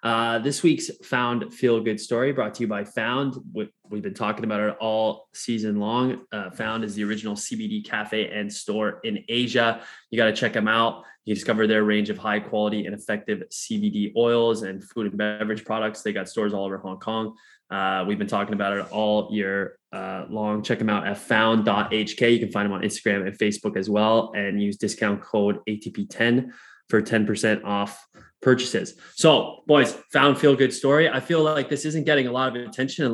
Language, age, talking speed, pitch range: English, 20-39, 205 wpm, 105-120 Hz